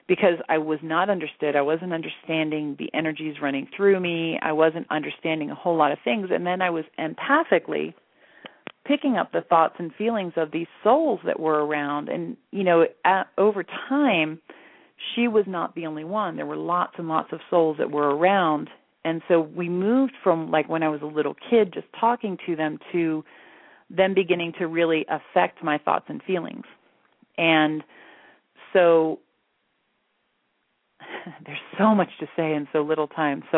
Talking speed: 175 wpm